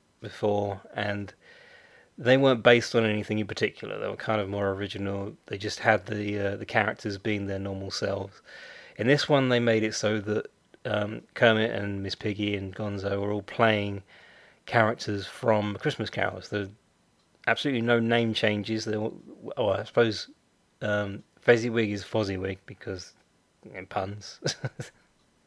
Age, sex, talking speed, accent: 30-49, male, 160 wpm, British